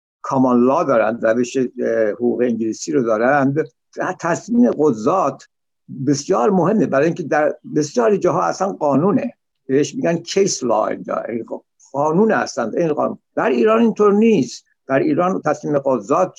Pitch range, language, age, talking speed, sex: 130-185 Hz, Persian, 60-79, 125 wpm, male